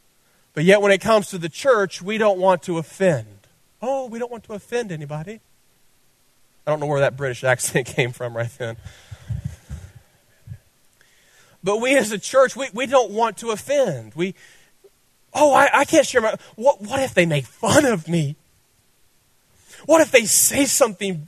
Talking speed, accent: 175 wpm, American